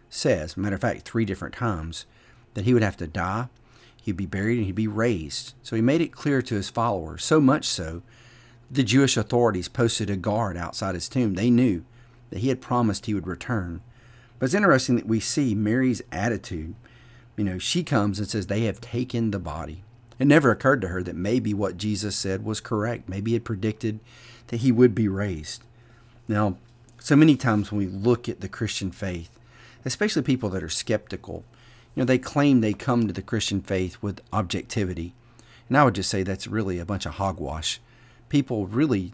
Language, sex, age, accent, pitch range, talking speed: English, male, 40-59, American, 95-120 Hz, 200 wpm